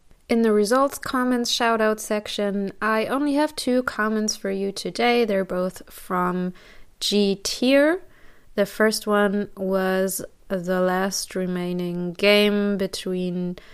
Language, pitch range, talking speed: English, 185-225 Hz, 125 wpm